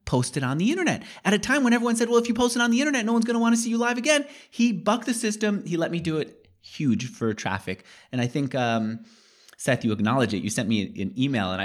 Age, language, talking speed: 30-49, English, 280 wpm